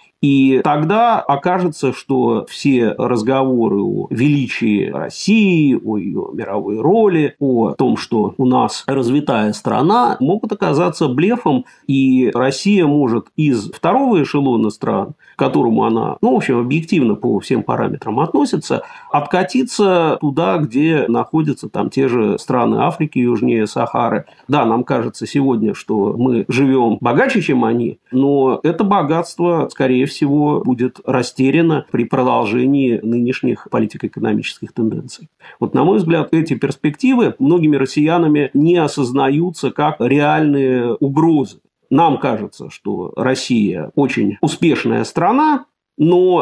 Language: Russian